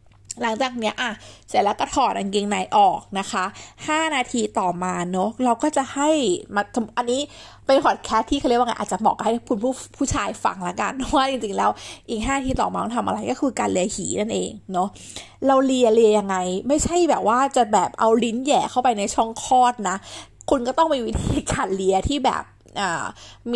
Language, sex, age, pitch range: Thai, female, 20-39, 195-255 Hz